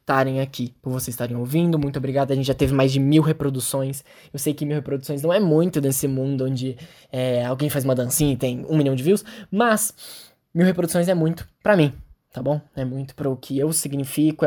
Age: 10-29